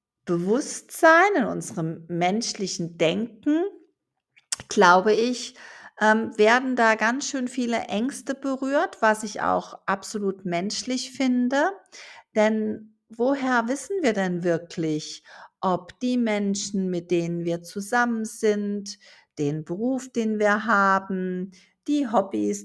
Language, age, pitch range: German, 50-69, 190-250 Hz